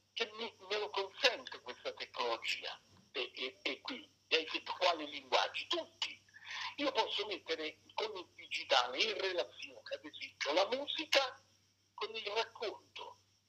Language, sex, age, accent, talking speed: Italian, male, 60-79, native, 115 wpm